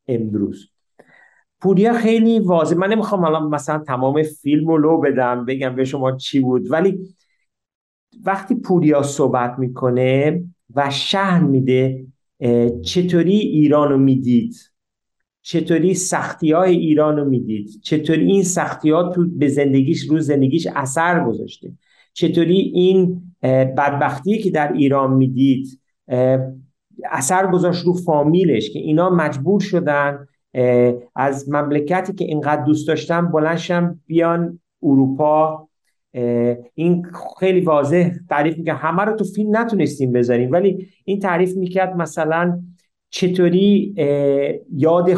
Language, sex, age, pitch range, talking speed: Persian, male, 50-69, 140-180 Hz, 110 wpm